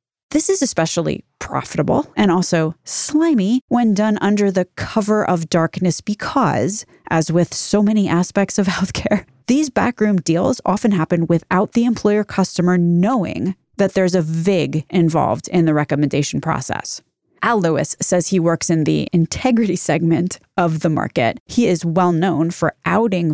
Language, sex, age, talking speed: English, female, 20-39, 150 wpm